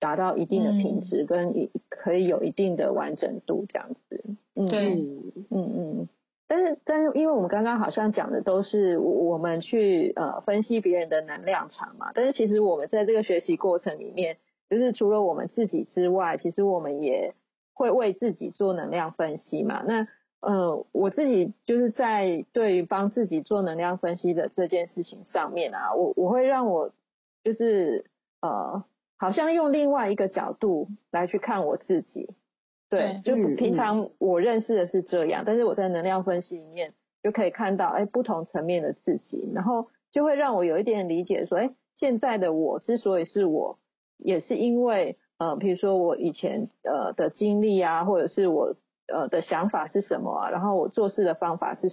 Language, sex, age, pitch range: Chinese, female, 30-49, 180-240 Hz